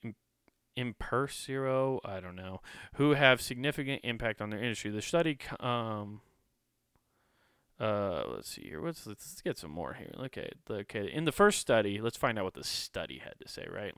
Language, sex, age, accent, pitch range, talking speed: English, male, 30-49, American, 110-130 Hz, 190 wpm